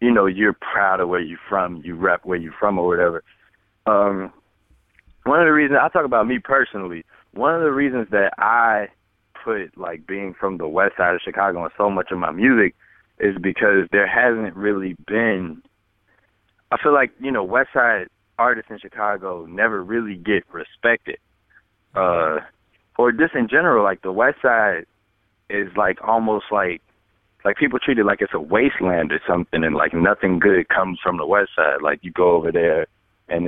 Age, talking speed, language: 20-39, 185 wpm, English